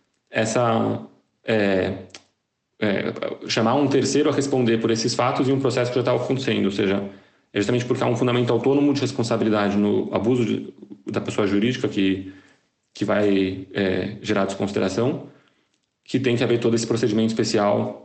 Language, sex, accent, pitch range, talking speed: Portuguese, male, Brazilian, 105-130 Hz, 165 wpm